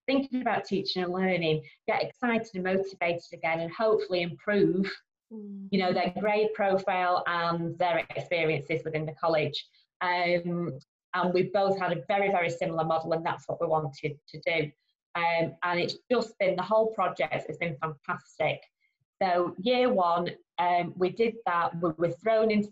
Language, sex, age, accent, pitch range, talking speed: English, female, 20-39, British, 175-215 Hz, 165 wpm